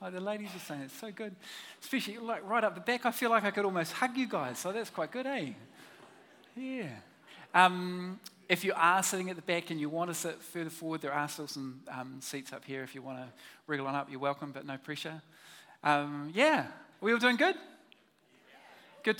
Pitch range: 140-180 Hz